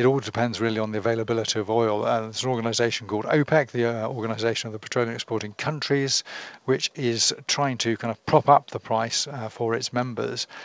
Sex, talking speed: male, 210 wpm